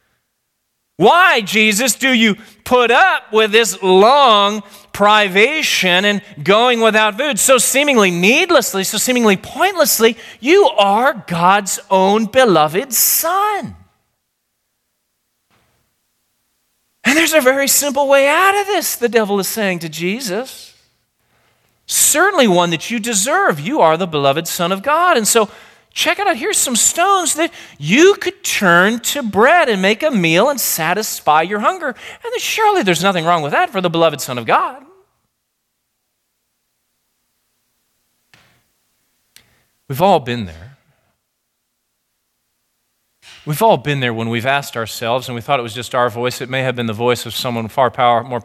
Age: 40-59